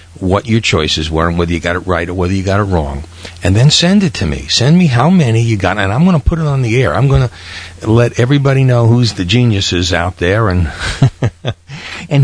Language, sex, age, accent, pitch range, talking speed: English, male, 50-69, American, 85-120 Hz, 245 wpm